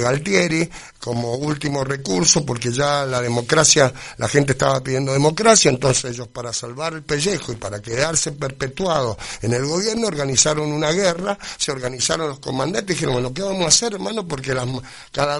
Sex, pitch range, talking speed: male, 130-170 Hz, 170 wpm